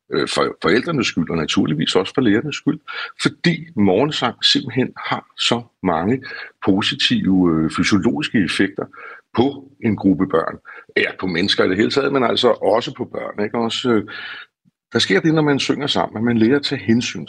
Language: Danish